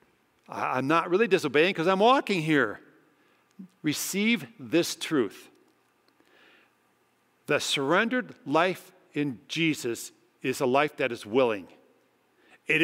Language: English